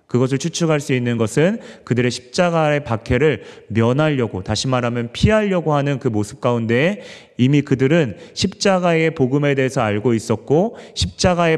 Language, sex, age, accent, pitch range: Korean, male, 30-49, native, 115-150 Hz